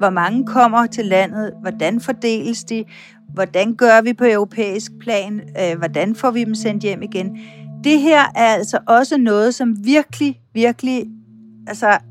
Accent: native